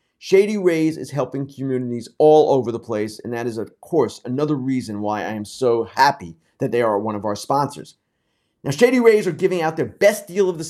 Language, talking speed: English, 220 wpm